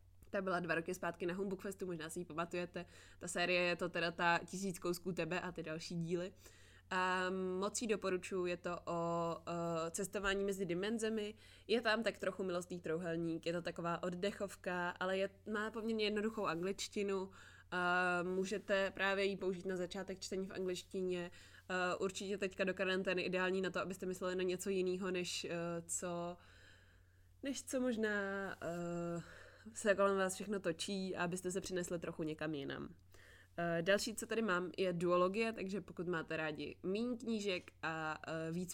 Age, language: 20-39, Czech